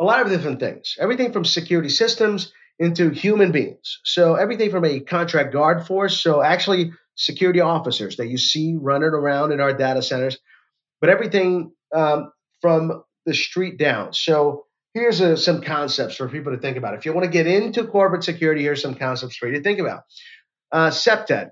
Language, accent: English, American